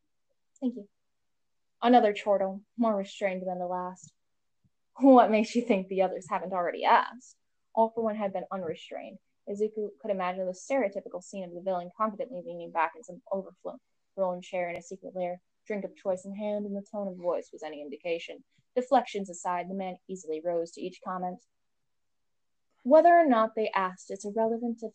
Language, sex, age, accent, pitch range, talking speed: English, female, 10-29, American, 185-235 Hz, 180 wpm